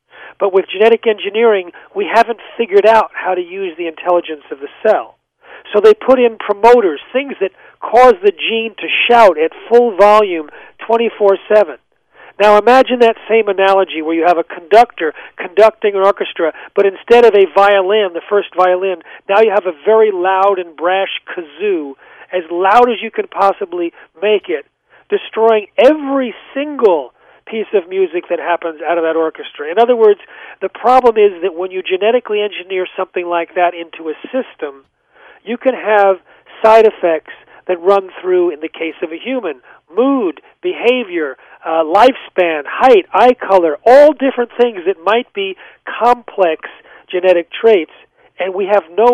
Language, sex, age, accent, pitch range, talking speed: English, male, 40-59, American, 180-240 Hz, 160 wpm